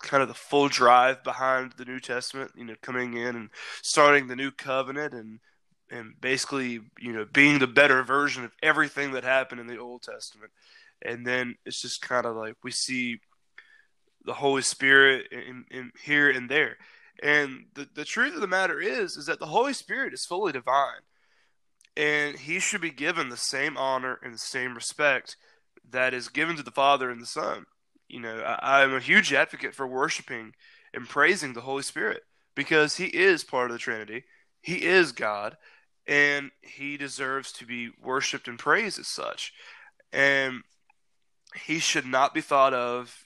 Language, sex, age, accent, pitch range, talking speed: English, male, 20-39, American, 125-150 Hz, 180 wpm